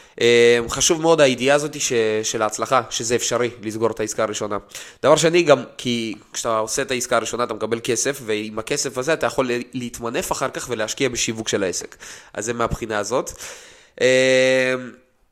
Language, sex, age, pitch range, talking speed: Hebrew, male, 20-39, 115-145 Hz, 170 wpm